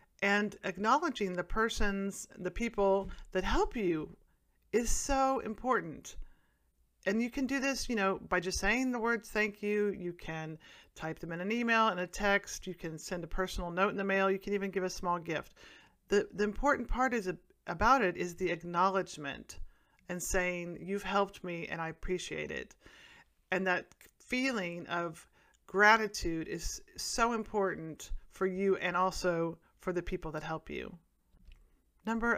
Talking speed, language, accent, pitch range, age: 165 wpm, English, American, 175-225 Hz, 40-59